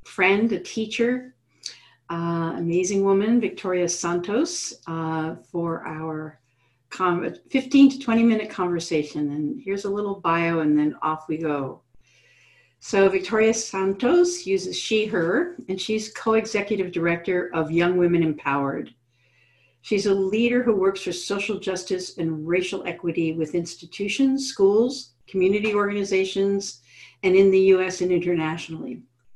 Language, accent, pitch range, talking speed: English, American, 160-200 Hz, 125 wpm